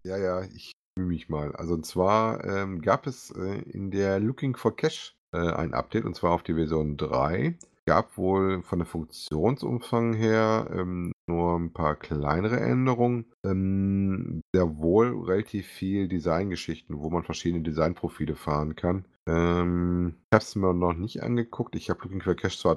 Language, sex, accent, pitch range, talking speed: German, male, German, 85-110 Hz, 170 wpm